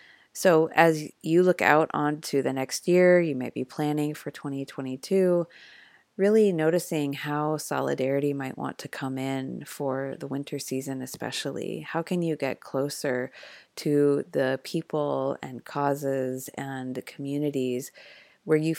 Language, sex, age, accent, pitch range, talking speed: English, female, 30-49, American, 140-165 Hz, 140 wpm